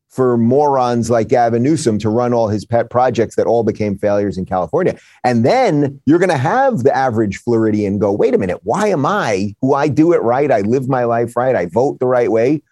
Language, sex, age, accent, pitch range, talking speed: English, male, 30-49, American, 110-135 Hz, 225 wpm